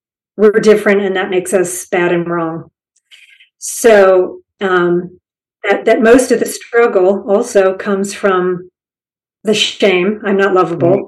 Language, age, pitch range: English, 50-69, 185-225 Hz